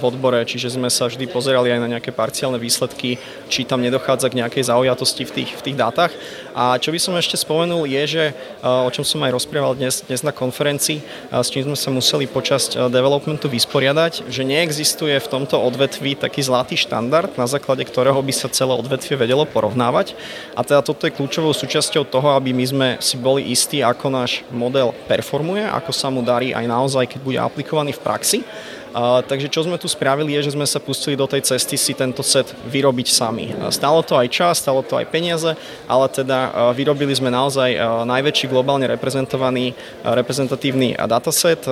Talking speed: 190 wpm